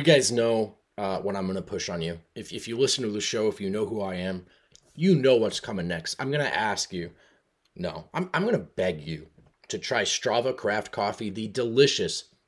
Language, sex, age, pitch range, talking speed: English, male, 30-49, 110-175 Hz, 230 wpm